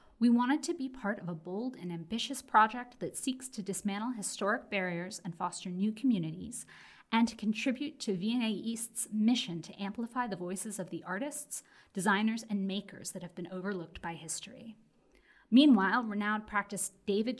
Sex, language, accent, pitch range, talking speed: female, English, American, 185-245 Hz, 165 wpm